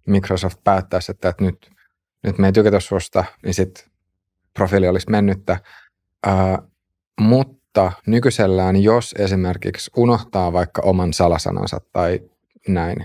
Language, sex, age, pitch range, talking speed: Finnish, male, 30-49, 90-100 Hz, 115 wpm